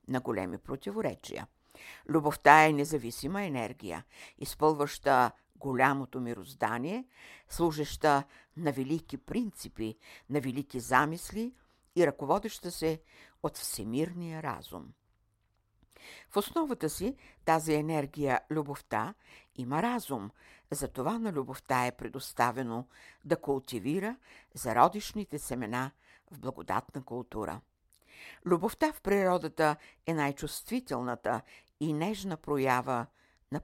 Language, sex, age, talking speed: Bulgarian, female, 60-79, 95 wpm